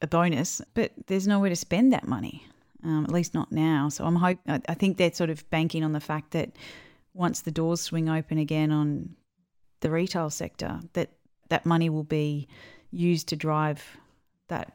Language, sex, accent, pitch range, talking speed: English, female, Australian, 150-175 Hz, 185 wpm